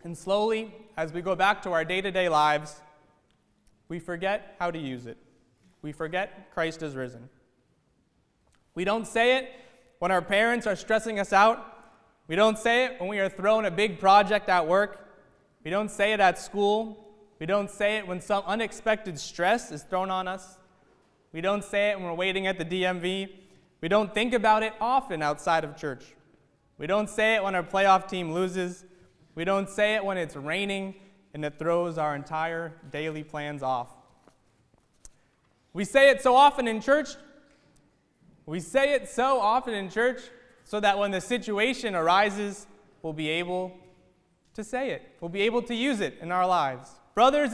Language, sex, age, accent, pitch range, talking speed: English, male, 20-39, American, 170-230 Hz, 180 wpm